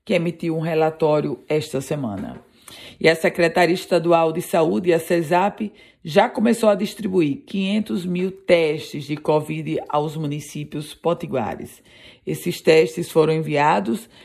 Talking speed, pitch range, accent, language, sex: 125 wpm, 150-185 Hz, Brazilian, Portuguese, female